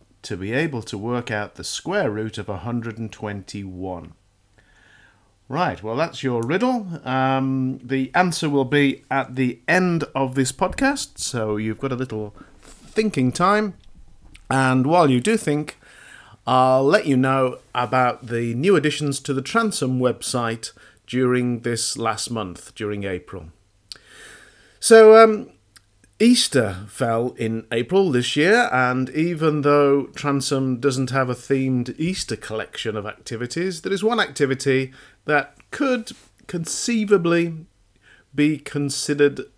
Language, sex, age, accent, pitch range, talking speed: English, male, 40-59, British, 110-150 Hz, 130 wpm